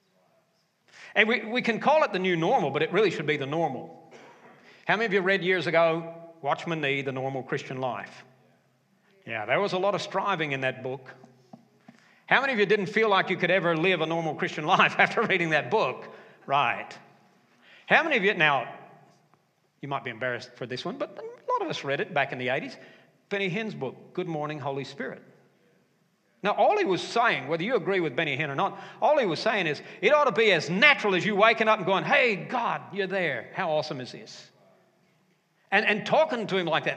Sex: male